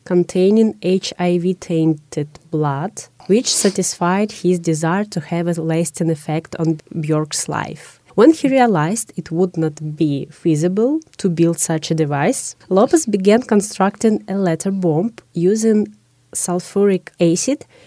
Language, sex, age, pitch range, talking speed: English, female, 20-39, 155-195 Hz, 125 wpm